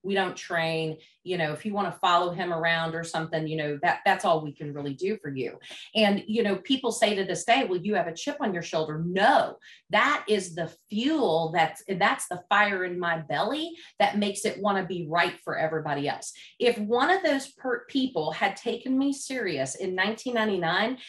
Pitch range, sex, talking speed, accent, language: 170-230 Hz, female, 215 wpm, American, English